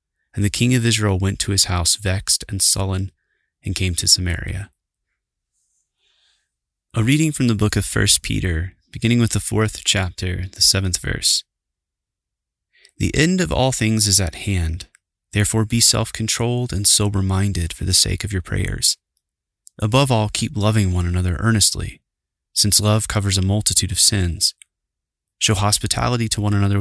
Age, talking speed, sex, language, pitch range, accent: 20-39, 155 wpm, male, English, 90-110 Hz, American